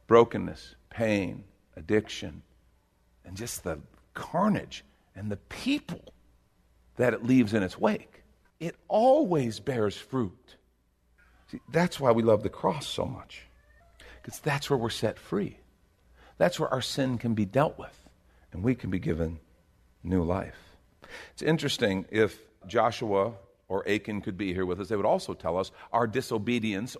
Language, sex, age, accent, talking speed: English, male, 50-69, American, 150 wpm